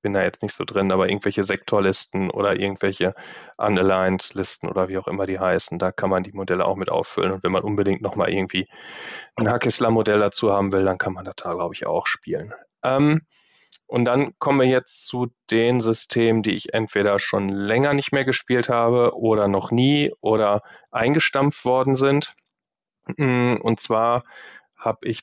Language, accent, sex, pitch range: German, German, male, 100-125 Hz